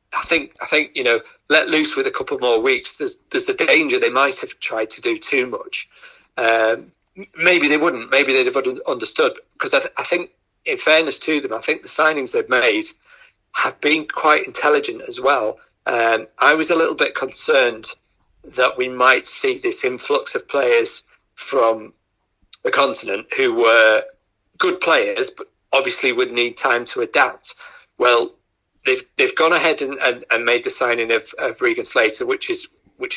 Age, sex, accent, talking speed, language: 40-59, male, British, 185 wpm, English